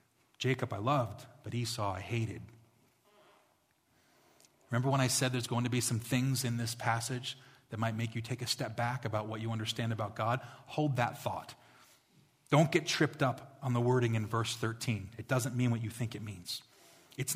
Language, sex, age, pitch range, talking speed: English, male, 30-49, 120-150 Hz, 195 wpm